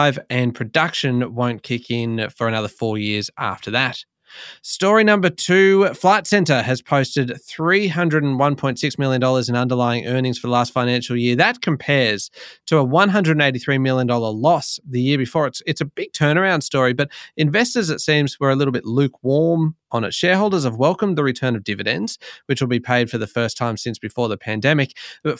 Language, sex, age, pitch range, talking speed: English, male, 20-39, 120-155 Hz, 180 wpm